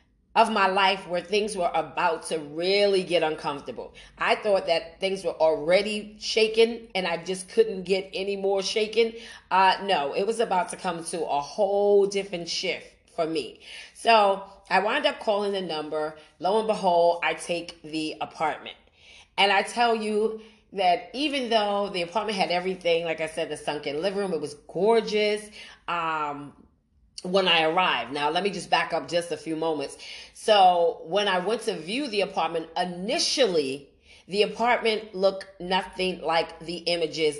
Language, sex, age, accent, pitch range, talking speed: English, female, 40-59, American, 165-210 Hz, 165 wpm